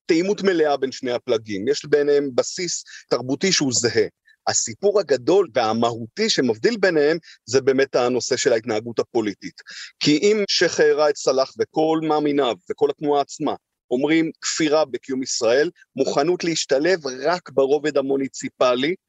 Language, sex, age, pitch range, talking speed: Hebrew, male, 30-49, 145-220 Hz, 125 wpm